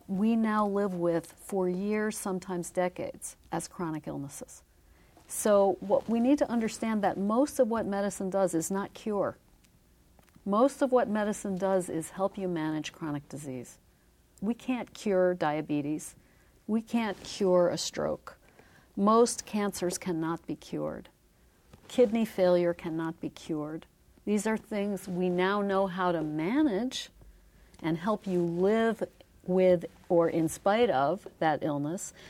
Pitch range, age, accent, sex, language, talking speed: 170-215 Hz, 50-69, American, female, English, 140 wpm